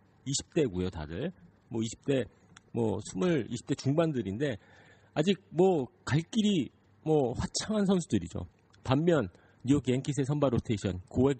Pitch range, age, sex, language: 100-145 Hz, 40-59, male, Korean